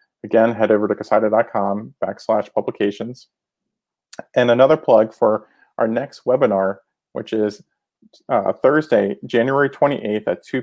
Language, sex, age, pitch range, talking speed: English, male, 30-49, 105-125 Hz, 125 wpm